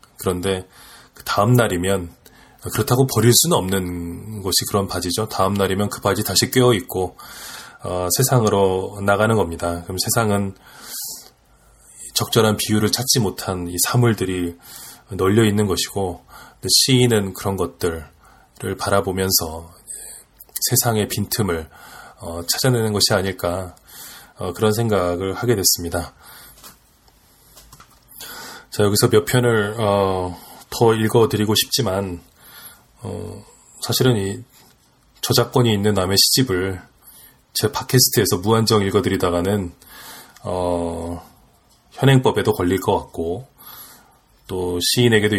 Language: Korean